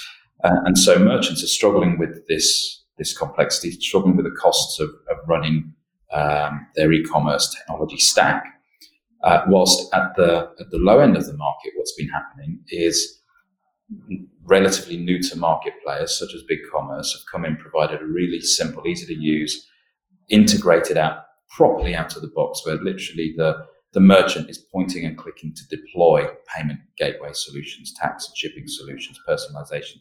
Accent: British